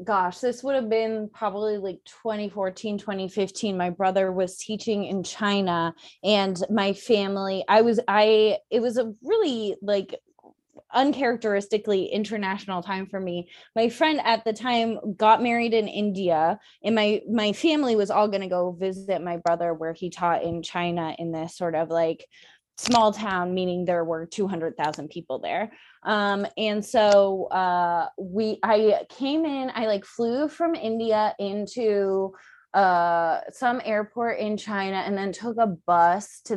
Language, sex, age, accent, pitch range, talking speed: English, female, 20-39, American, 180-220 Hz, 155 wpm